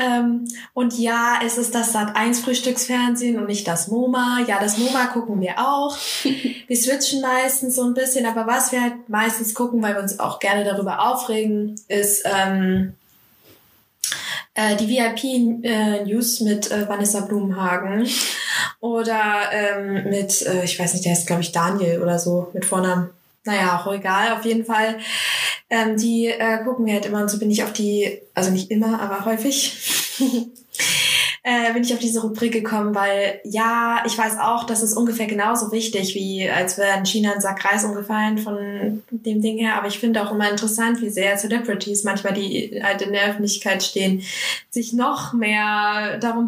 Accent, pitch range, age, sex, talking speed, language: German, 200-235 Hz, 20-39, female, 175 wpm, German